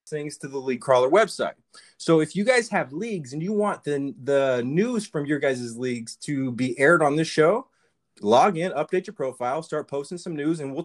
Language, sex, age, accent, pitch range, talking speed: English, male, 30-49, American, 135-170 Hz, 215 wpm